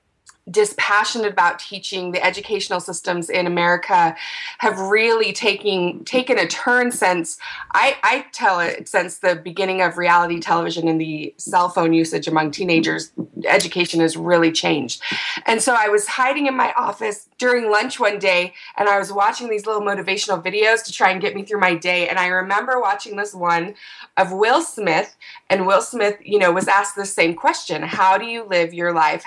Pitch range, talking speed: 175-215 Hz, 180 wpm